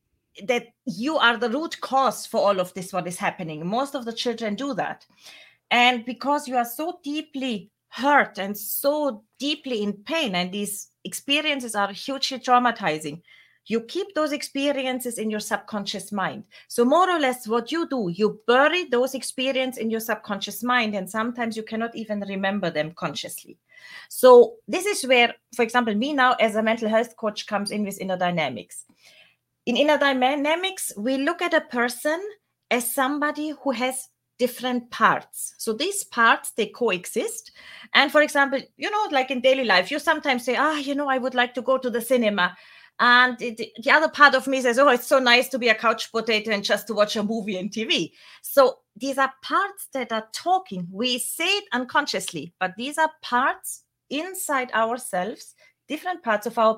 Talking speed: 185 wpm